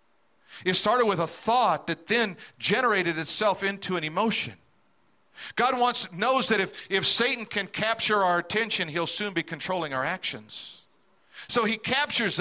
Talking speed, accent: 155 wpm, American